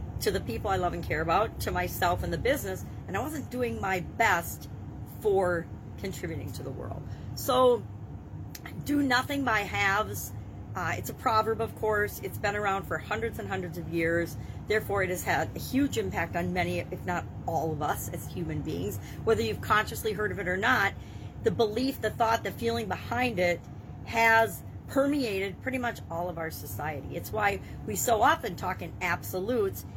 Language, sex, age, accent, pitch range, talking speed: English, female, 40-59, American, 170-245 Hz, 185 wpm